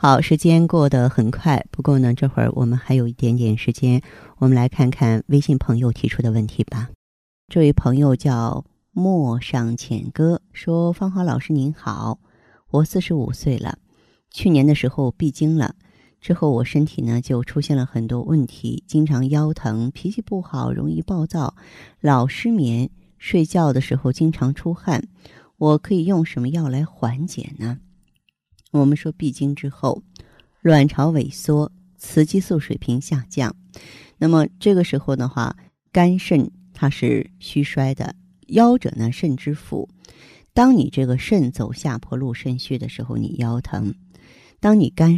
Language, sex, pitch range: Chinese, female, 125-160 Hz